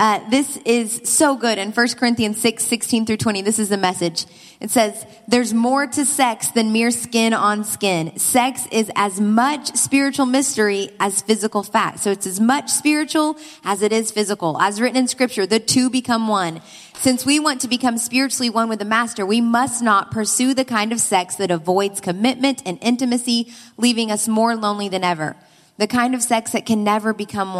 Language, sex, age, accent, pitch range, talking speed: English, female, 20-39, American, 190-235 Hz, 195 wpm